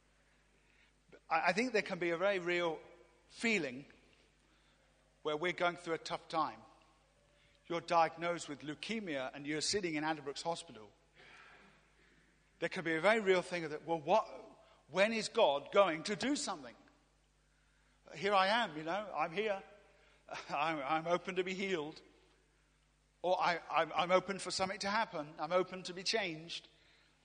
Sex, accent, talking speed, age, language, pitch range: male, British, 155 wpm, 50-69, English, 155-200 Hz